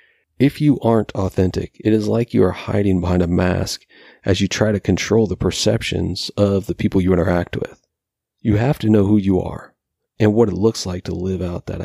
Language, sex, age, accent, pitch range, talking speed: English, male, 40-59, American, 90-110 Hz, 215 wpm